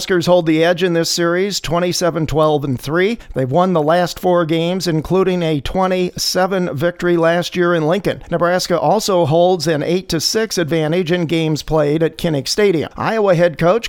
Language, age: English, 50-69